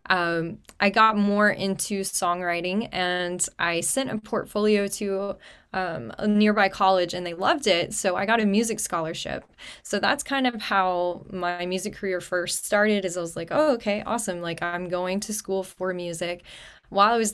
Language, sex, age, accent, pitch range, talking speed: English, female, 10-29, American, 180-215 Hz, 185 wpm